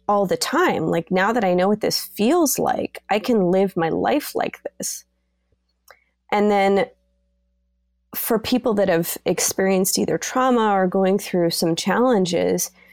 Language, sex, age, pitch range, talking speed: English, female, 20-39, 165-205 Hz, 155 wpm